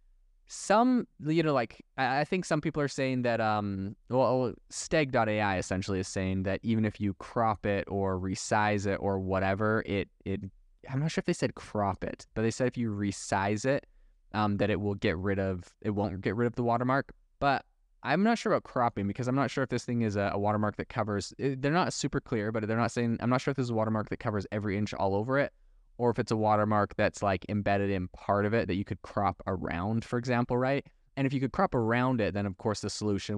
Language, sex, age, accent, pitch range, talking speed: English, male, 20-39, American, 100-120 Hz, 240 wpm